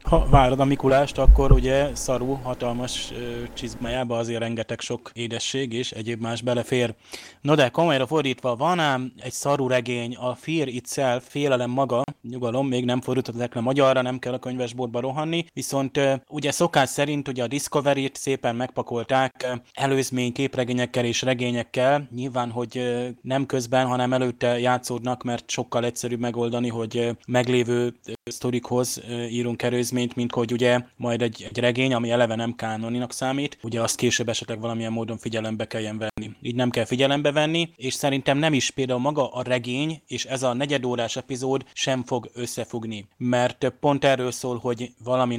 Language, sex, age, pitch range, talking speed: Hungarian, male, 20-39, 120-135 Hz, 165 wpm